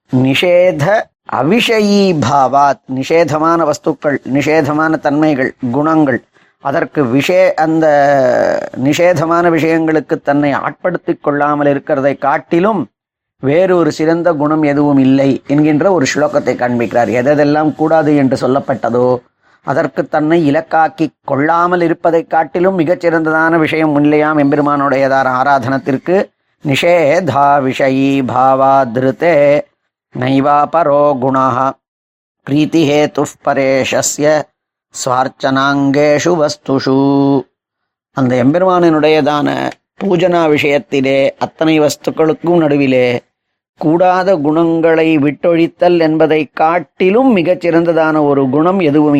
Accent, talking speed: native, 75 wpm